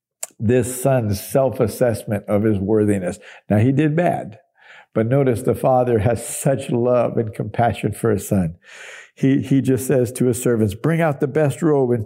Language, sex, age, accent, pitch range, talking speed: English, male, 50-69, American, 115-145 Hz, 175 wpm